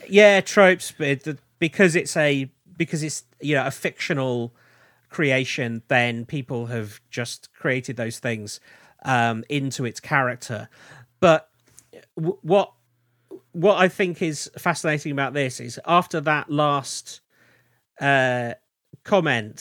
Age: 40-59